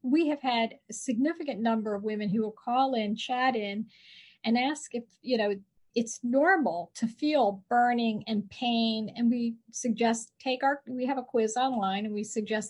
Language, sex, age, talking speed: English, female, 40-59, 185 wpm